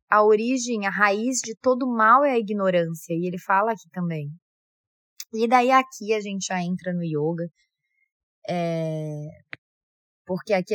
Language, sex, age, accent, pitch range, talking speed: Portuguese, female, 20-39, Brazilian, 170-220 Hz, 145 wpm